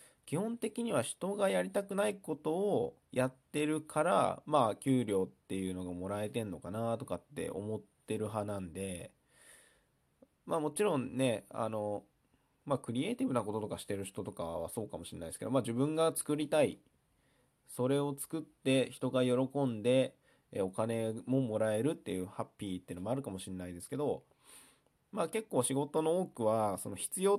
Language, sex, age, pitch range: Japanese, male, 20-39, 100-145 Hz